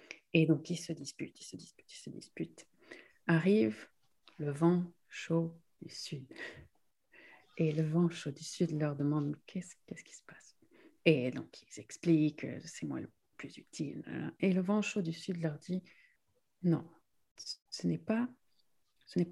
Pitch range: 150-175 Hz